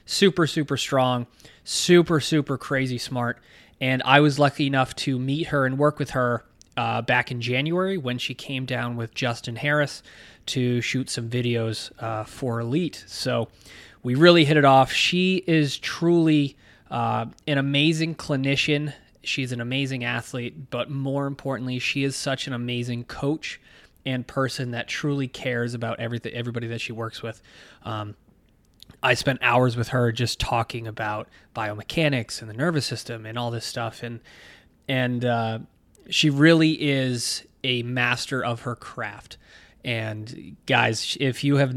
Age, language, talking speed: 20-39, English, 155 wpm